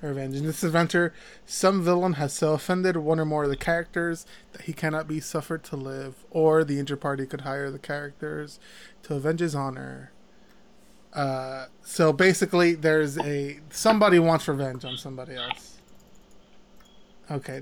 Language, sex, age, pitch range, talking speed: English, male, 20-39, 140-170 Hz, 155 wpm